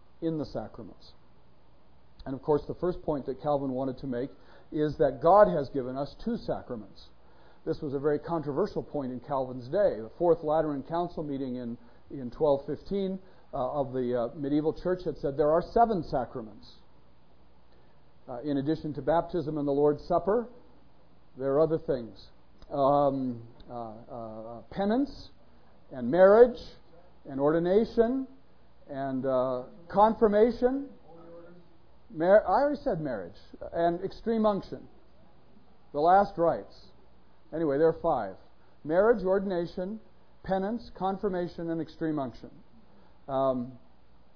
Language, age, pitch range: English, 50-69, 135-205 Hz